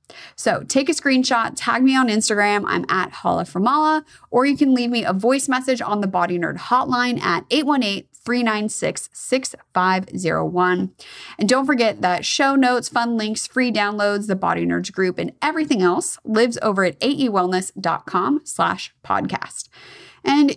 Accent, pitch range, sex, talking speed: American, 190-265 Hz, female, 145 wpm